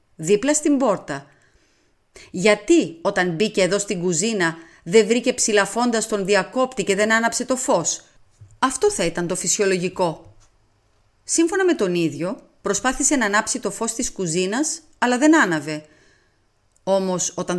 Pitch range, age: 160-265 Hz, 30-49